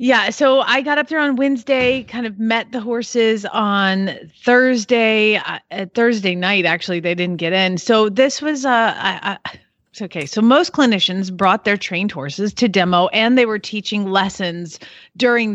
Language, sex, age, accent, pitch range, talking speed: English, female, 30-49, American, 195-260 Hz, 170 wpm